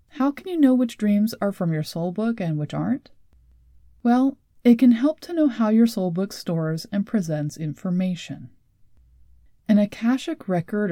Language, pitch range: English, 140-225 Hz